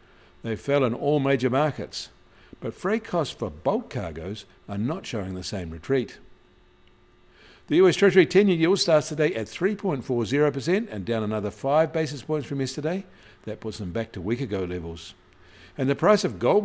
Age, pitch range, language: 60-79, 100-140 Hz, English